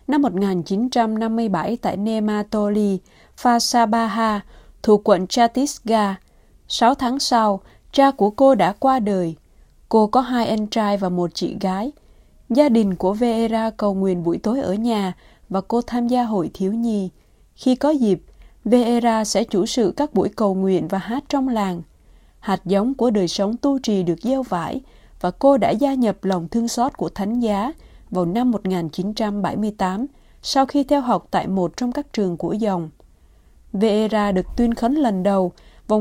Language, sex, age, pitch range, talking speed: Vietnamese, female, 20-39, 190-240 Hz, 165 wpm